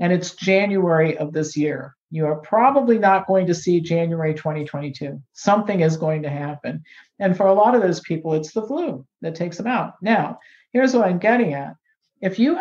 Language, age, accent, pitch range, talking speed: English, 50-69, American, 155-195 Hz, 200 wpm